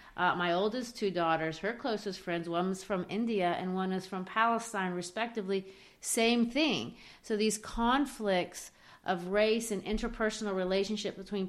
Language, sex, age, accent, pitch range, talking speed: English, female, 40-59, American, 185-220 Hz, 150 wpm